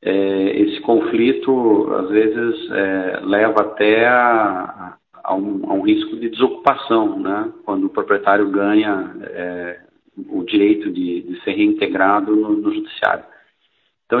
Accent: Brazilian